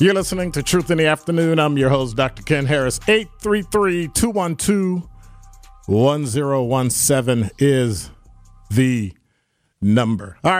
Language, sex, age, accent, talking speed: English, male, 50-69, American, 100 wpm